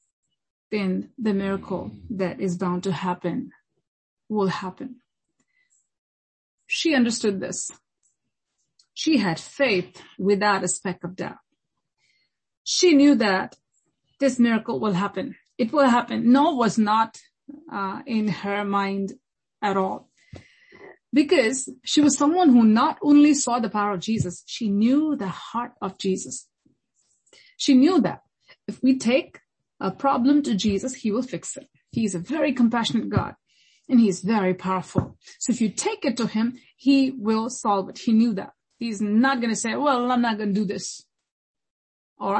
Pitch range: 205-275 Hz